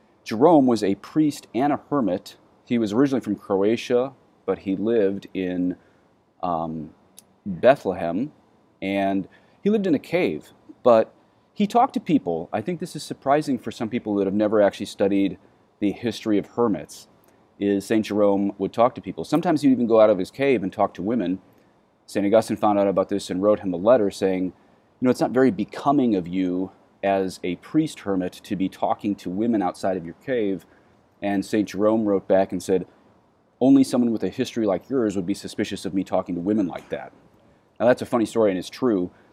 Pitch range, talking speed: 95-115 Hz, 200 wpm